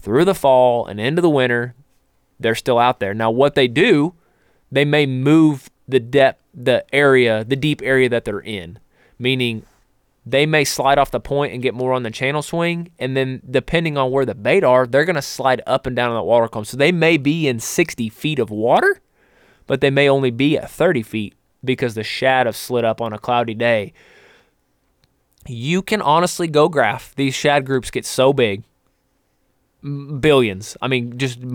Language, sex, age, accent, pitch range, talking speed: English, male, 20-39, American, 115-140 Hz, 195 wpm